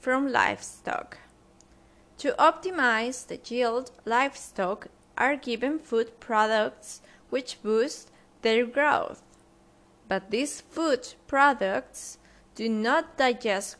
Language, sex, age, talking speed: English, female, 20-39, 95 wpm